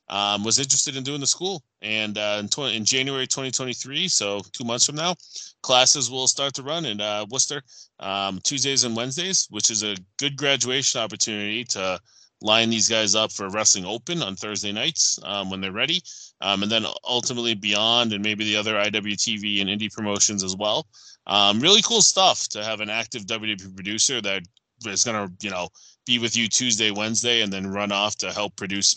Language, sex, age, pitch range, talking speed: English, male, 20-39, 100-125 Hz, 195 wpm